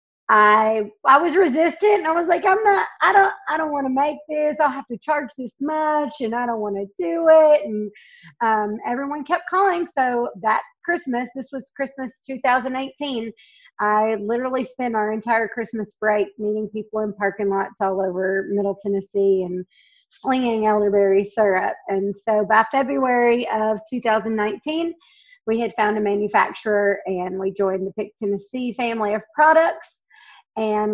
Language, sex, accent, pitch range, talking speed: English, female, American, 210-270 Hz, 160 wpm